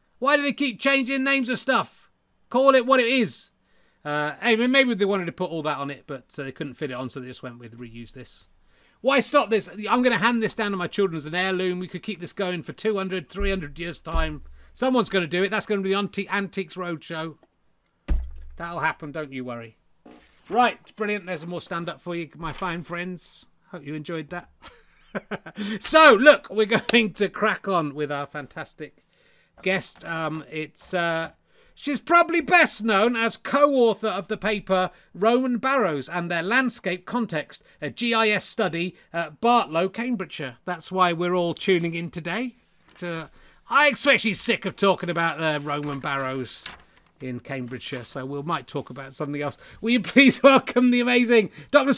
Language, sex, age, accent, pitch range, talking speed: English, male, 30-49, British, 155-230 Hz, 185 wpm